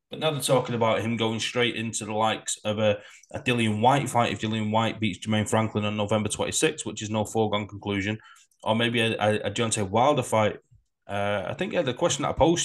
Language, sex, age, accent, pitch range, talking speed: English, male, 20-39, British, 105-130 Hz, 230 wpm